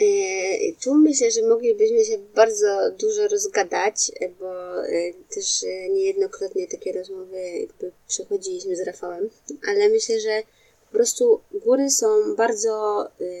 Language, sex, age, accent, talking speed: Polish, female, 20-39, native, 110 wpm